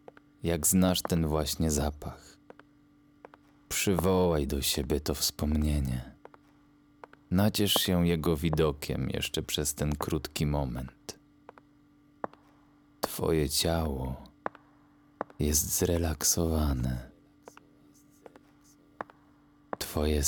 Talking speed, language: 70 wpm, Polish